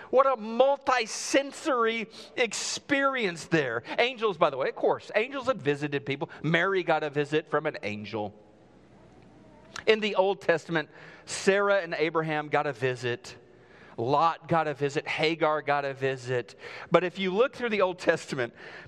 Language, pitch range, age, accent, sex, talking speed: English, 140-205 Hz, 40-59, American, male, 155 wpm